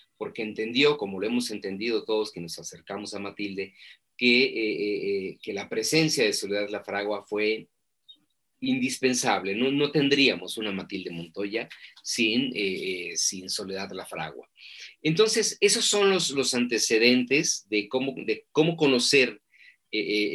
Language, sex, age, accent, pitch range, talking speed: Spanish, male, 40-59, Mexican, 105-150 Hz, 145 wpm